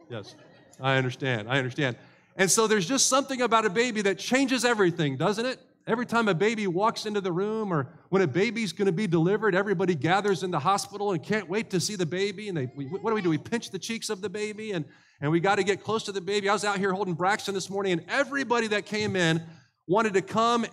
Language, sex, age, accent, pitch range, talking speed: English, male, 40-59, American, 160-215 Hz, 245 wpm